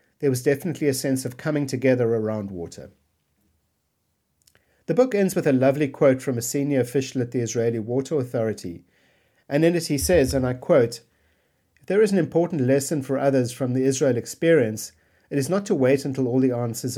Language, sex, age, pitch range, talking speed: English, male, 50-69, 120-155 Hz, 195 wpm